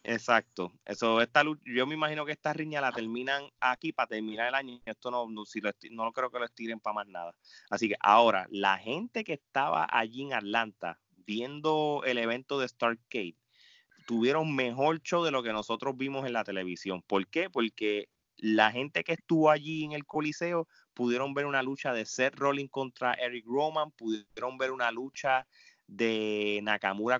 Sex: male